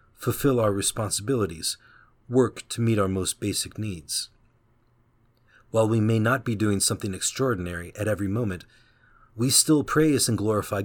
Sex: male